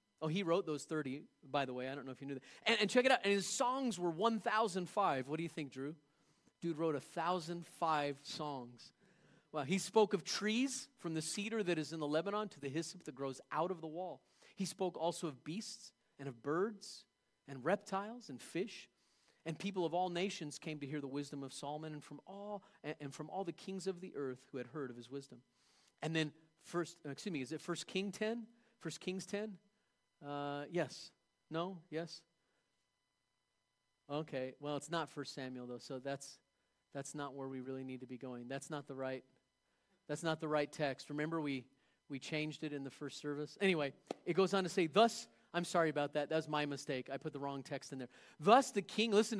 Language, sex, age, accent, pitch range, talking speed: English, male, 40-59, American, 140-190 Hz, 220 wpm